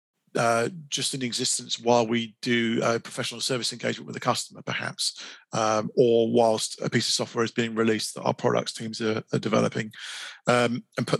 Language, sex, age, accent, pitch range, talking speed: English, male, 40-59, British, 110-125 Hz, 190 wpm